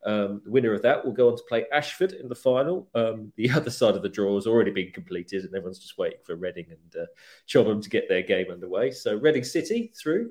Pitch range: 115-170 Hz